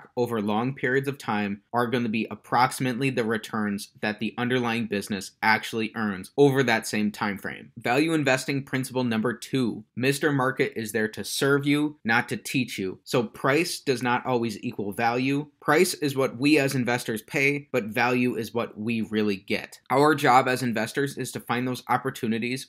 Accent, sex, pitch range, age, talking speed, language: American, male, 110-135 Hz, 20-39, 180 wpm, English